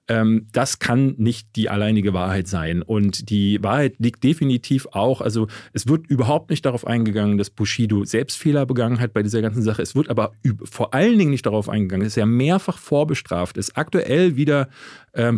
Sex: male